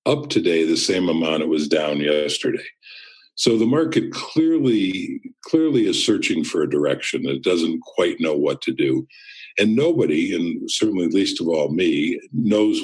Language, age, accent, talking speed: English, 50-69, American, 165 wpm